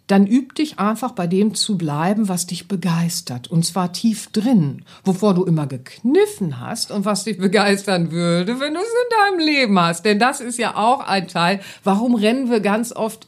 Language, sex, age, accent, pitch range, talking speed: German, female, 50-69, German, 155-215 Hz, 200 wpm